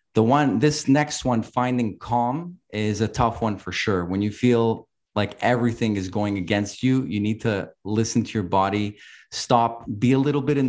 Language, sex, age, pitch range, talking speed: English, male, 30-49, 95-115 Hz, 195 wpm